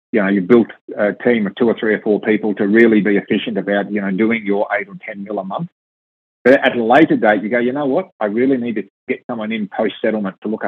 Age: 30-49